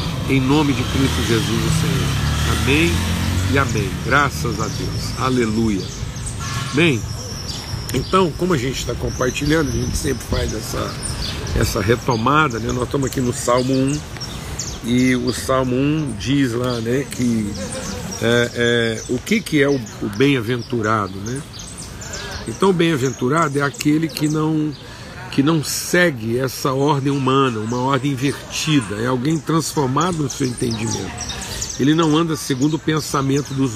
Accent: Brazilian